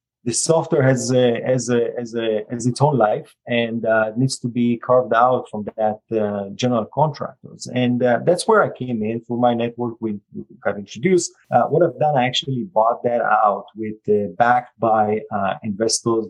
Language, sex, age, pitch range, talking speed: English, male, 30-49, 110-135 Hz, 190 wpm